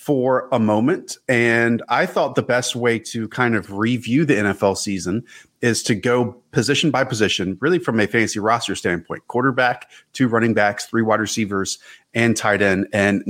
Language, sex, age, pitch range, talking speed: English, male, 30-49, 105-135 Hz, 175 wpm